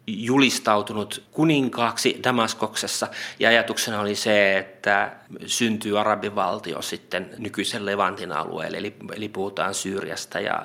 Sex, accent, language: male, native, Finnish